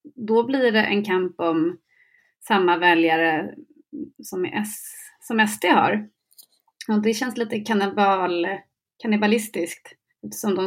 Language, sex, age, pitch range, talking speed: English, female, 30-49, 180-235 Hz, 105 wpm